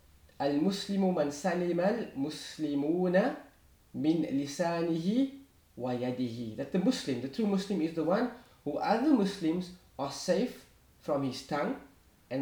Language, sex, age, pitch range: English, male, 20-39, 125-185 Hz